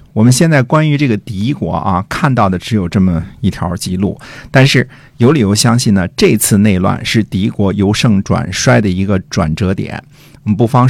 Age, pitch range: 50-69, 95-130 Hz